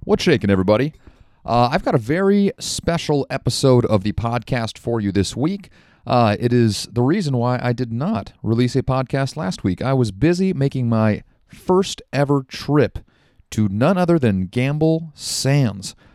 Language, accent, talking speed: English, American, 165 wpm